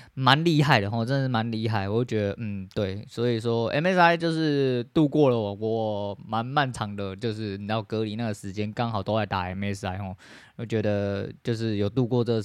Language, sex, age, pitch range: Chinese, male, 20-39, 100-125 Hz